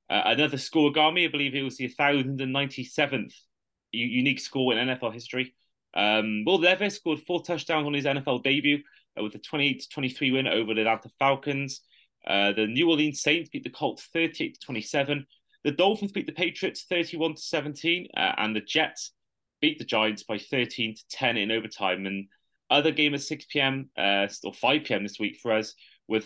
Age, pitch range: 30-49, 110-150 Hz